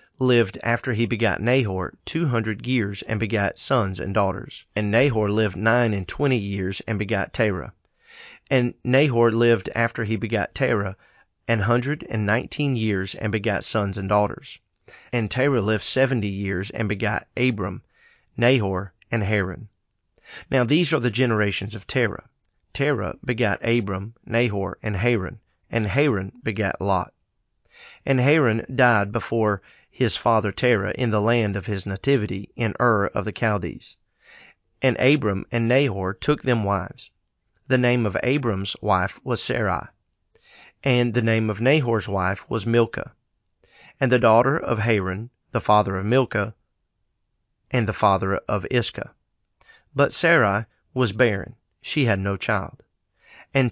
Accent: American